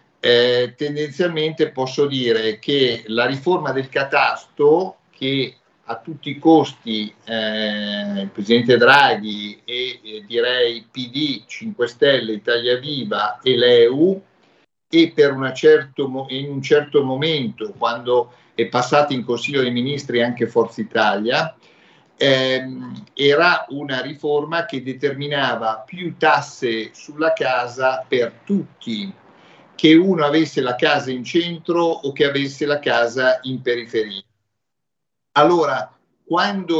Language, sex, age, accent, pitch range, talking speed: Italian, male, 50-69, native, 120-160 Hz, 120 wpm